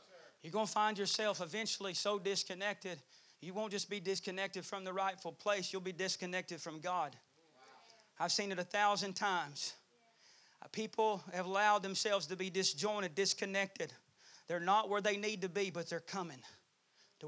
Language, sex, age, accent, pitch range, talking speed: English, male, 30-49, American, 185-215 Hz, 165 wpm